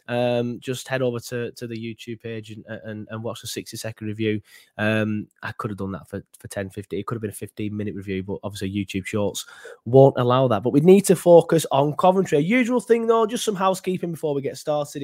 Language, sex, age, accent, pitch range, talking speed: English, male, 20-39, British, 120-150 Hz, 240 wpm